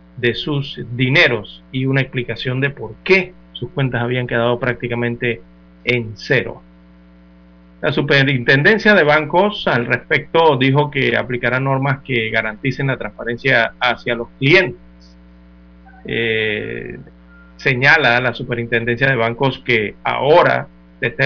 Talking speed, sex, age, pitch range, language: 120 wpm, male, 40-59, 110-130 Hz, Spanish